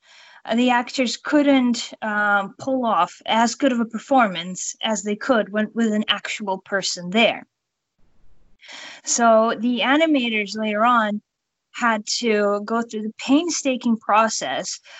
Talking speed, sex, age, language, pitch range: 125 wpm, female, 20-39, English, 205-250 Hz